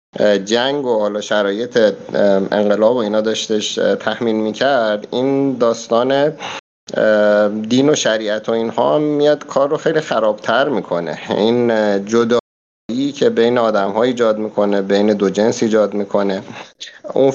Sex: male